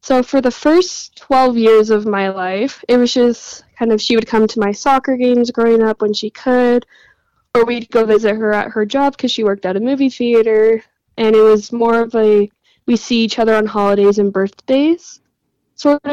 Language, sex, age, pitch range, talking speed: English, female, 10-29, 210-245 Hz, 210 wpm